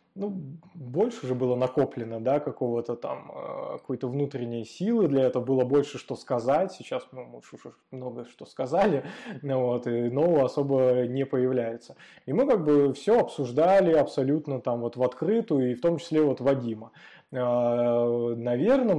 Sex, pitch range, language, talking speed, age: male, 125-145 Hz, Russian, 150 wpm, 20-39